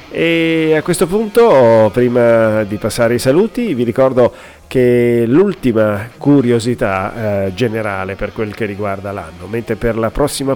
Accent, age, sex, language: native, 40-59, male, Italian